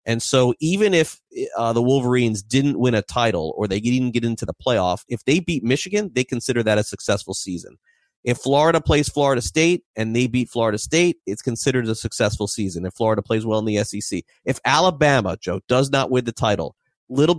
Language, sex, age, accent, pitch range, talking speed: English, male, 30-49, American, 105-135 Hz, 205 wpm